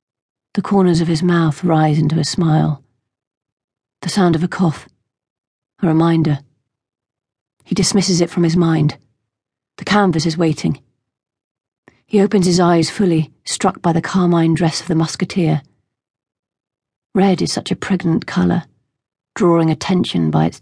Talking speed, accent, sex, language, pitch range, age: 145 wpm, British, female, English, 145-185 Hz, 40-59